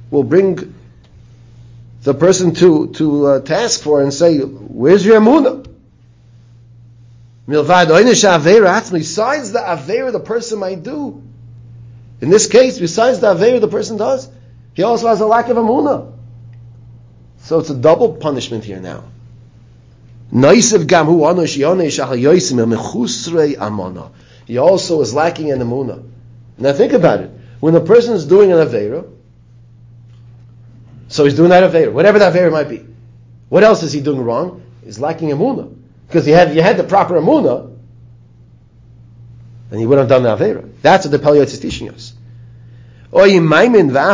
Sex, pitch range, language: male, 120-175 Hz, English